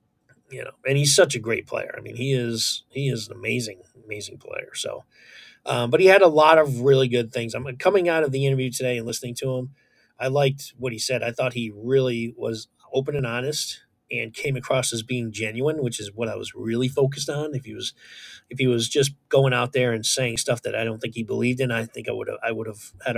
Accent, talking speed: American, 250 wpm